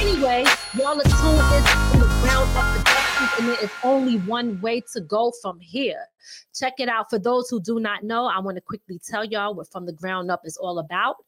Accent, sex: American, female